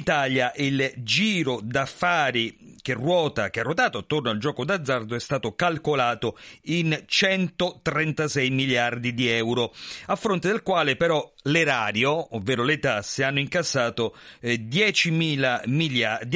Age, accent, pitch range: 40-59, native, 115-155 Hz